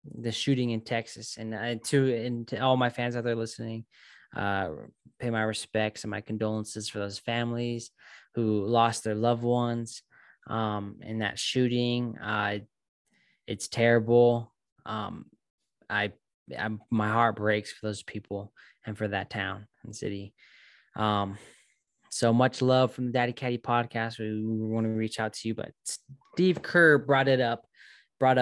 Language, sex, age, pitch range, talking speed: English, male, 10-29, 110-130 Hz, 160 wpm